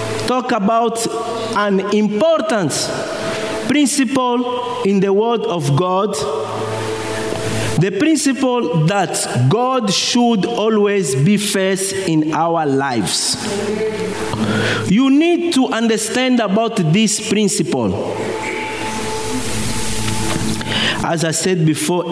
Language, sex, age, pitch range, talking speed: English, male, 50-69, 155-255 Hz, 85 wpm